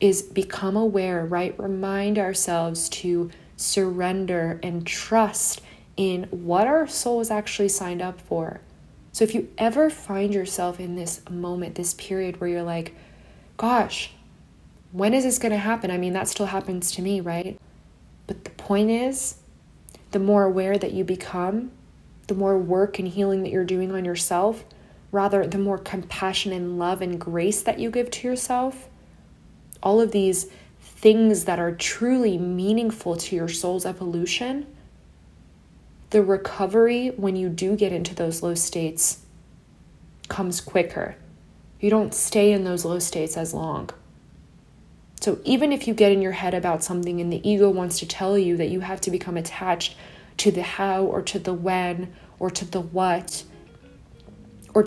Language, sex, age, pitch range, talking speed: English, female, 20-39, 175-205 Hz, 165 wpm